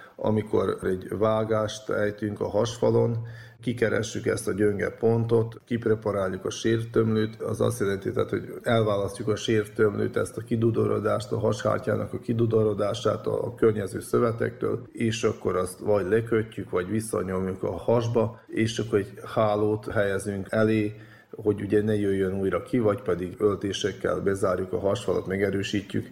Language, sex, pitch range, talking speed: Hungarian, male, 95-110 Hz, 135 wpm